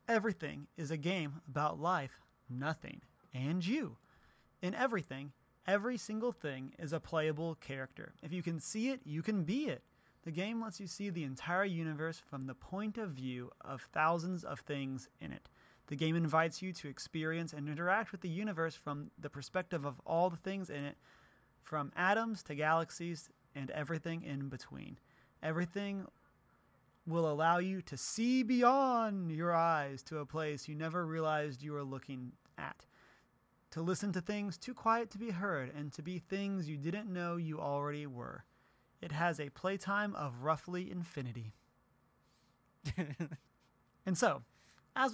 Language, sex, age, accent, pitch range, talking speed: English, male, 30-49, American, 145-190 Hz, 160 wpm